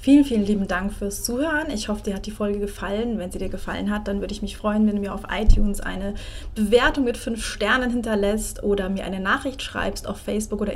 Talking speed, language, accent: 235 wpm, German, German